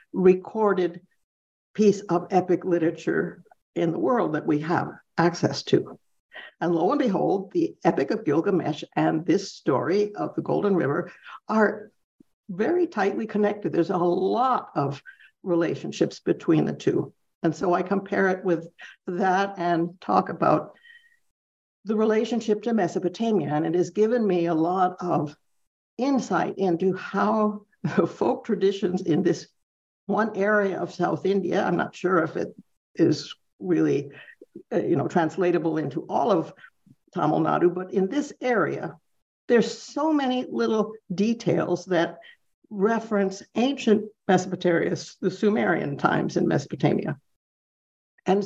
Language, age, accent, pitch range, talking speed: English, 60-79, American, 175-210 Hz, 135 wpm